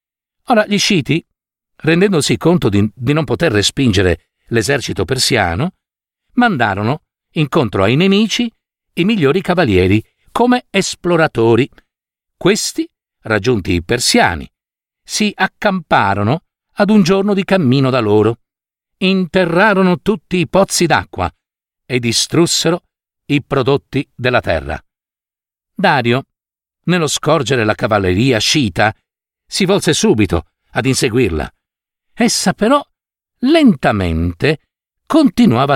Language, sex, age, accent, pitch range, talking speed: Italian, male, 50-69, native, 125-195 Hz, 100 wpm